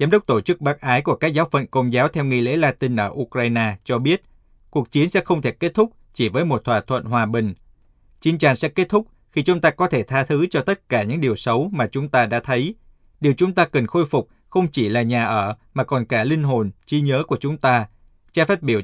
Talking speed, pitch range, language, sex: 260 wpm, 120-155 Hz, Vietnamese, male